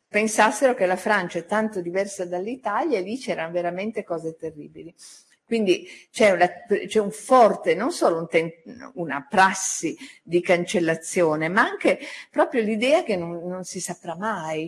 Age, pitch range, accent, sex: 50-69, 160-205 Hz, native, female